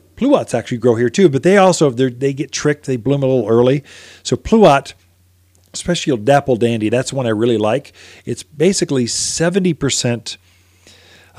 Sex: male